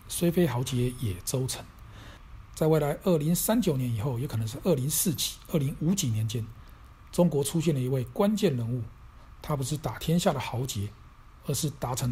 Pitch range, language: 115-160 Hz, Chinese